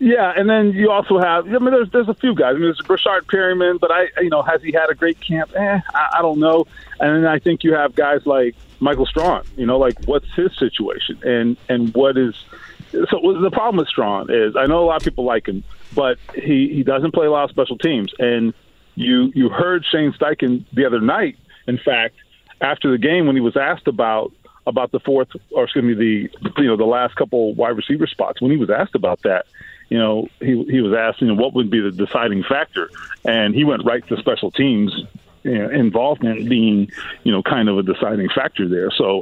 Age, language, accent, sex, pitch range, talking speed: 40-59, English, American, male, 115-170 Hz, 235 wpm